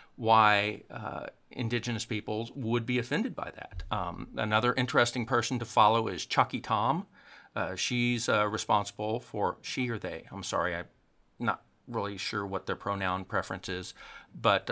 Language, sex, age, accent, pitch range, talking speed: English, male, 50-69, American, 105-130 Hz, 155 wpm